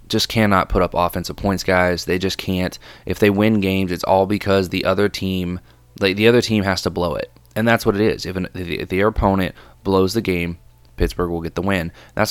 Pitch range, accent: 90-105 Hz, American